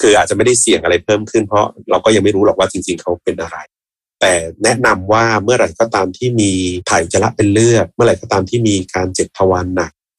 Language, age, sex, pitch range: Thai, 30-49, male, 95-115 Hz